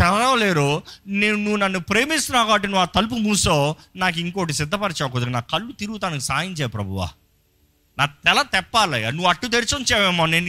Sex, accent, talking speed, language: male, native, 150 wpm, Telugu